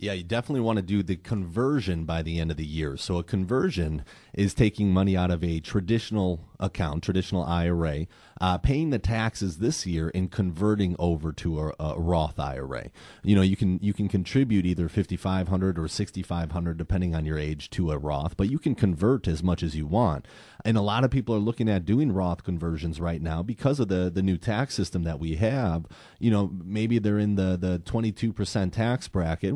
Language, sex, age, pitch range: English, male, 30-49, 85-110 Hz